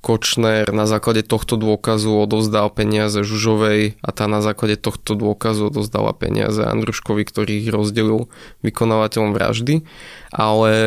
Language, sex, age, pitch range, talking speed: Slovak, male, 20-39, 105-115 Hz, 125 wpm